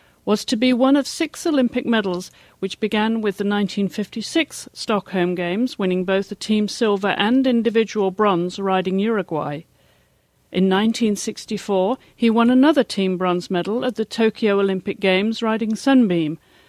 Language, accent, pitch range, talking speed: English, British, 190-235 Hz, 145 wpm